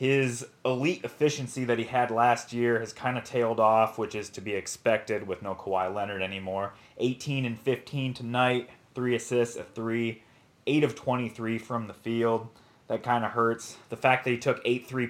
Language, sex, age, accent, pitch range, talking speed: English, male, 20-39, American, 115-130 Hz, 190 wpm